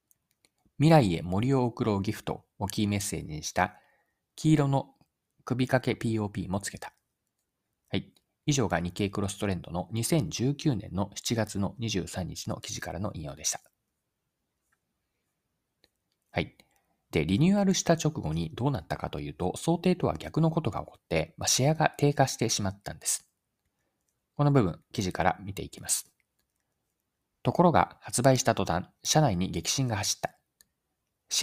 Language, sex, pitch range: Japanese, male, 100-140 Hz